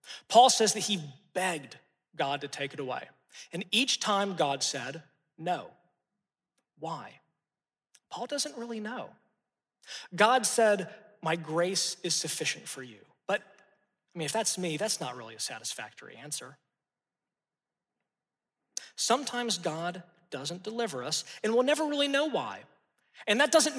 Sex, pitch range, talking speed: male, 165-225 Hz, 140 wpm